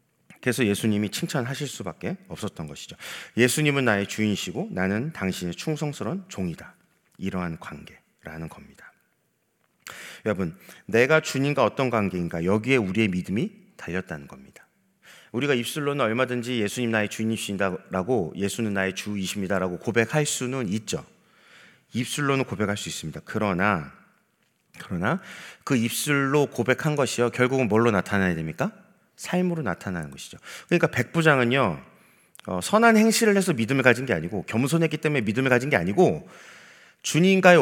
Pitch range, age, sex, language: 105-165 Hz, 40-59, male, Korean